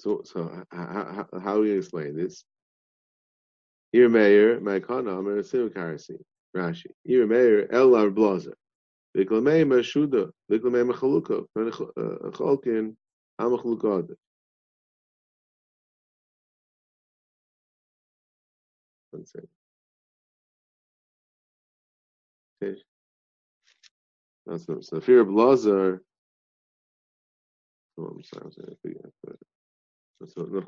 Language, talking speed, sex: English, 40 wpm, male